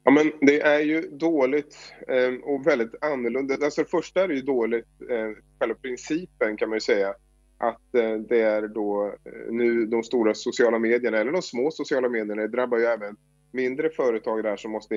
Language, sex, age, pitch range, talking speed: English, male, 20-39, 110-140 Hz, 175 wpm